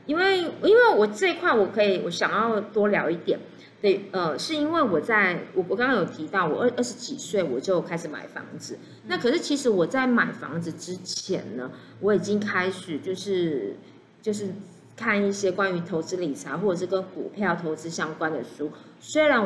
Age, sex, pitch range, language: 30-49, female, 185-250 Hz, Chinese